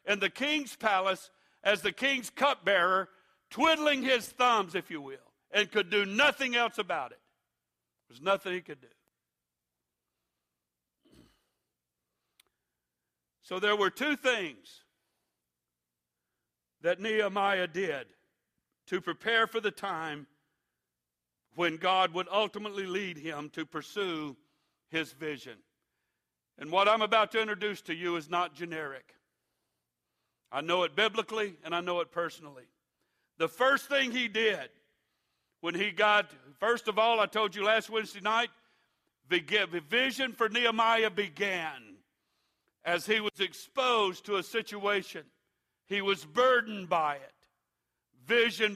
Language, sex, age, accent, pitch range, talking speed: English, male, 60-79, American, 150-220 Hz, 130 wpm